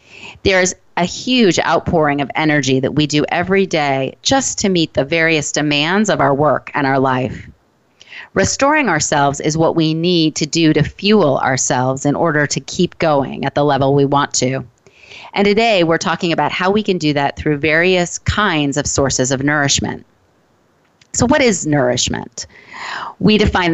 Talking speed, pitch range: 175 wpm, 140-185 Hz